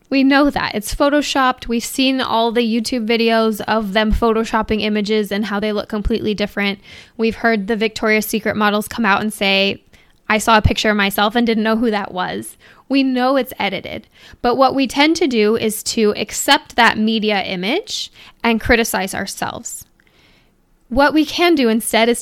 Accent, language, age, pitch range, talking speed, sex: American, English, 10-29, 215-255 Hz, 185 wpm, female